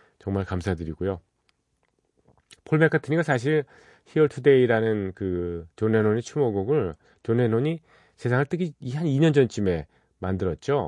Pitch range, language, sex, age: 95-125 Hz, Korean, male, 40-59